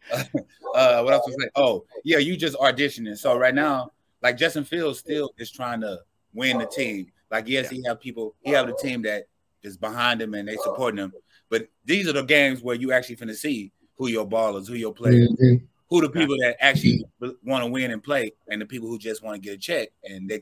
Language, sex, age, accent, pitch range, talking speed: English, male, 30-49, American, 115-145 Hz, 235 wpm